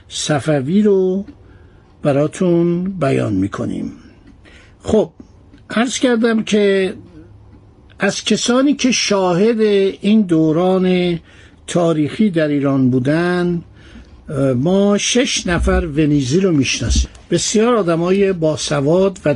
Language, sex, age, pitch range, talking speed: Persian, male, 60-79, 145-195 Hz, 95 wpm